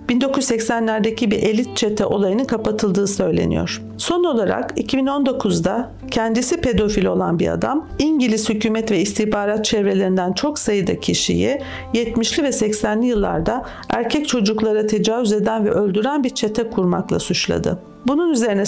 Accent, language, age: native, Turkish, 50-69